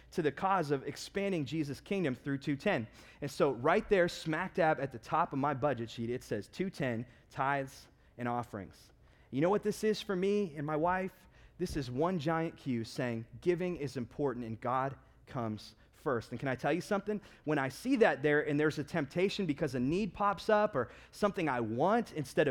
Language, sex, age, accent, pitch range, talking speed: English, male, 30-49, American, 125-180 Hz, 205 wpm